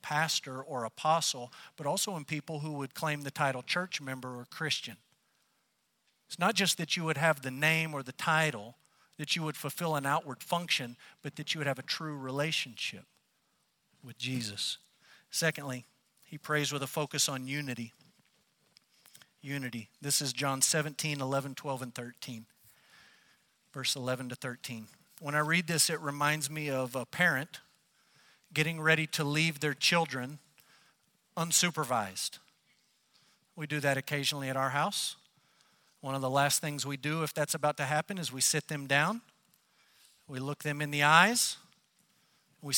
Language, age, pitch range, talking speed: English, 50-69, 135-160 Hz, 160 wpm